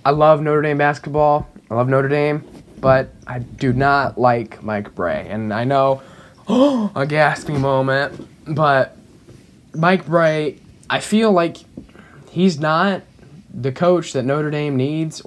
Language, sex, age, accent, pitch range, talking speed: English, male, 10-29, American, 120-150 Hz, 145 wpm